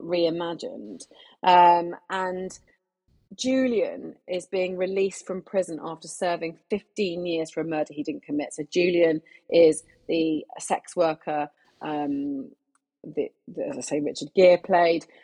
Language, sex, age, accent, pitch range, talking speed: English, female, 30-49, British, 165-210 Hz, 125 wpm